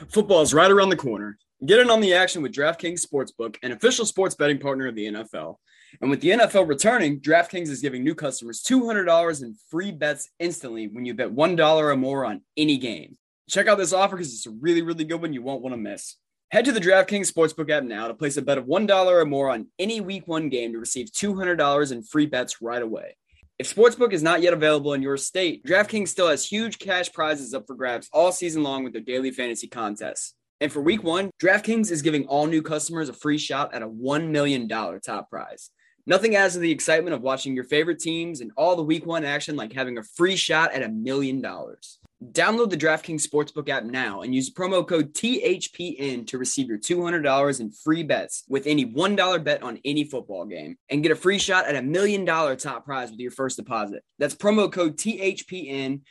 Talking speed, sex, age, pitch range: 220 wpm, male, 20-39, 130-175 Hz